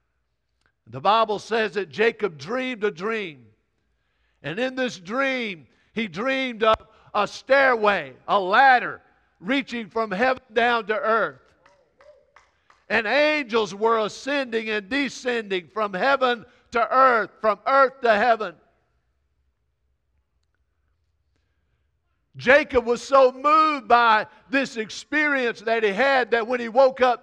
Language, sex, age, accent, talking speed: English, male, 50-69, American, 120 wpm